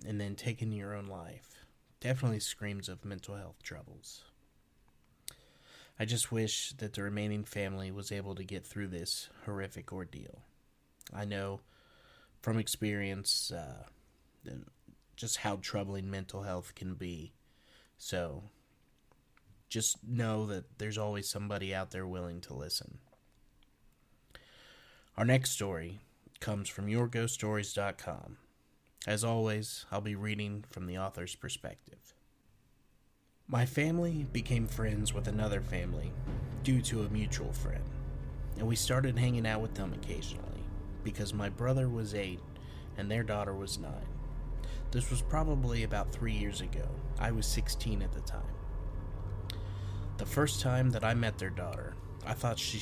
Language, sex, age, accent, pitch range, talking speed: English, male, 30-49, American, 95-115 Hz, 135 wpm